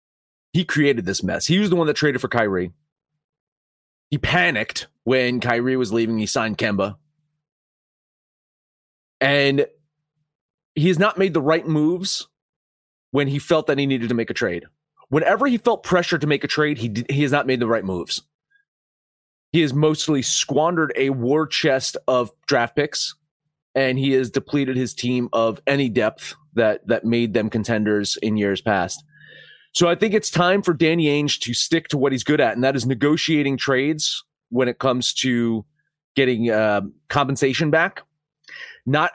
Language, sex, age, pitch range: English, male, 30-49, 125-150 Hz